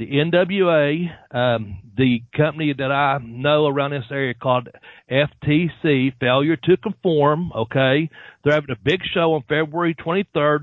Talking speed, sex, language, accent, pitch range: 140 wpm, male, English, American, 140-175 Hz